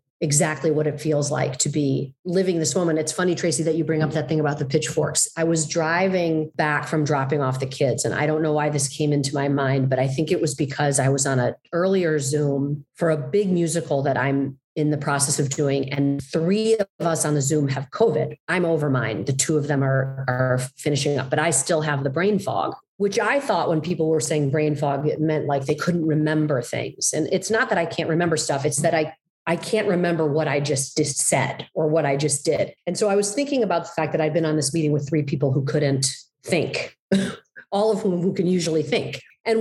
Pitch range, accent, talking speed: 145-190 Hz, American, 240 wpm